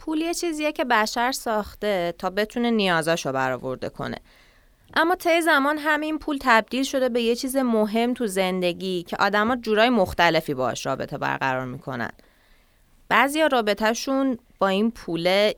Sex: female